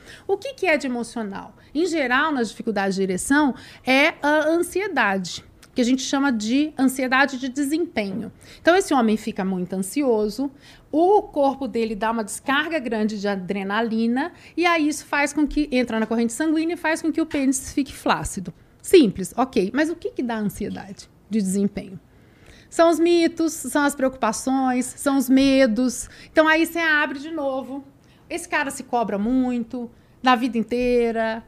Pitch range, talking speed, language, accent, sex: 225-310 Hz, 170 wpm, Portuguese, Brazilian, female